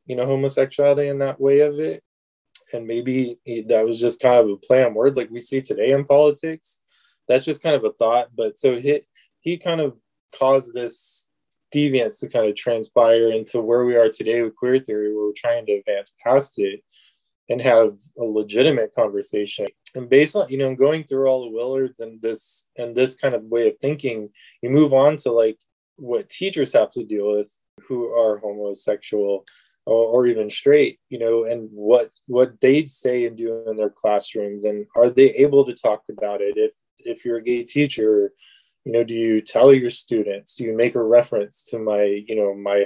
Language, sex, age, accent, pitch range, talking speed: English, male, 20-39, American, 110-145 Hz, 200 wpm